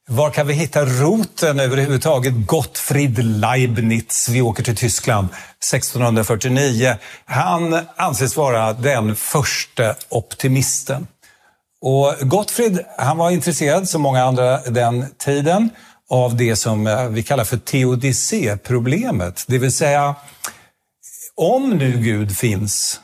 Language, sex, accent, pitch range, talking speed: Swedish, male, native, 115-150 Hz, 105 wpm